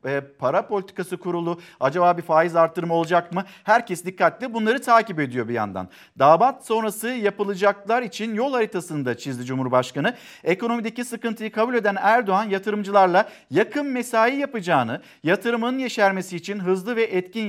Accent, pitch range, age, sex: native, 180-235 Hz, 50-69, male